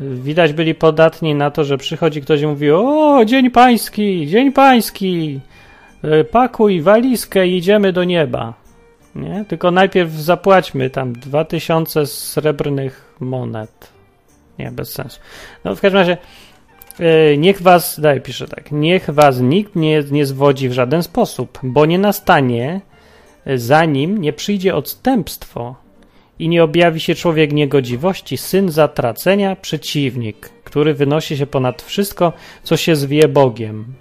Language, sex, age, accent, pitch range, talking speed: Polish, male, 30-49, native, 140-180 Hz, 130 wpm